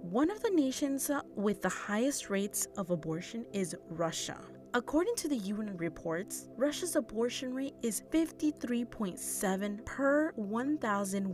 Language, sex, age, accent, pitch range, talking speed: English, female, 30-49, American, 185-270 Hz, 125 wpm